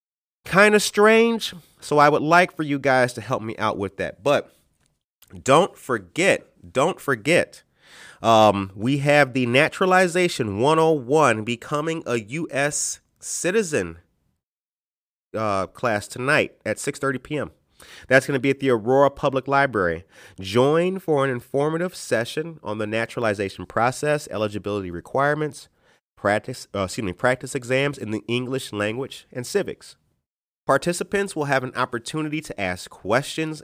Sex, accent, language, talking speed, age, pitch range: male, American, English, 135 wpm, 30-49, 105-145 Hz